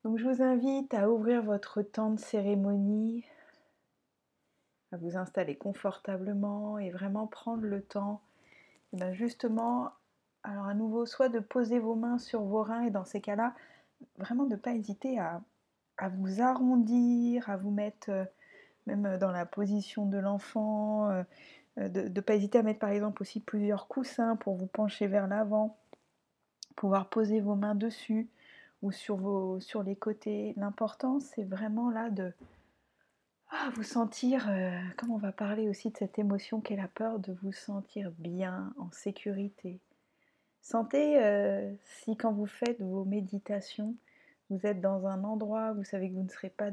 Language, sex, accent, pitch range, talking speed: French, female, French, 195-230 Hz, 165 wpm